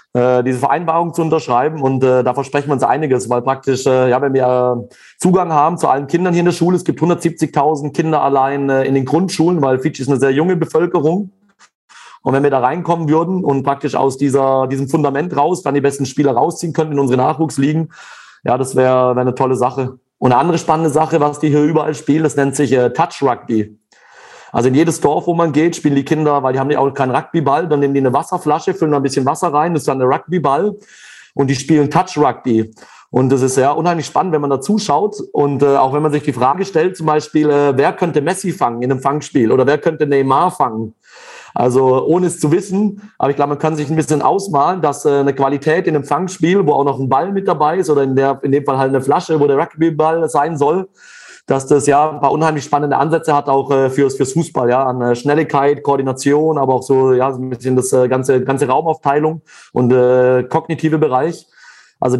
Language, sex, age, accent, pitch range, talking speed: German, male, 40-59, German, 135-160 Hz, 230 wpm